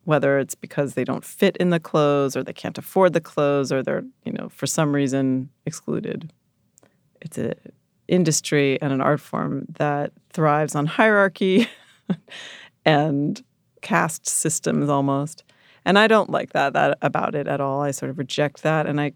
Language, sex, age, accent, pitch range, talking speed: English, female, 30-49, American, 135-170 Hz, 170 wpm